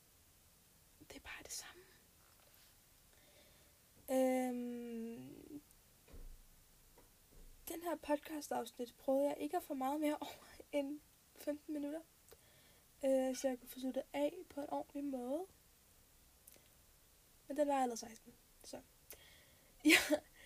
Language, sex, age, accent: Danish, female, 10-29, native